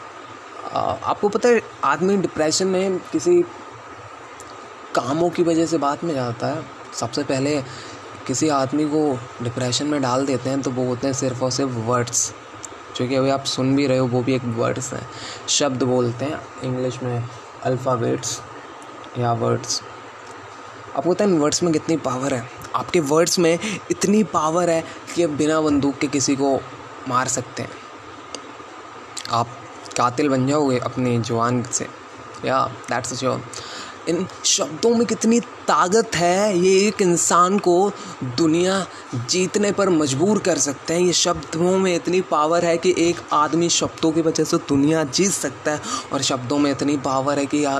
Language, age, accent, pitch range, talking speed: Hindi, 20-39, native, 130-180 Hz, 160 wpm